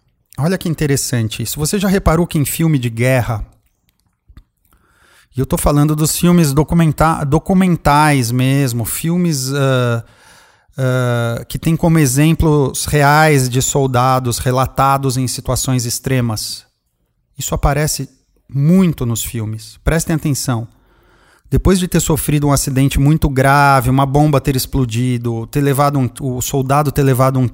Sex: male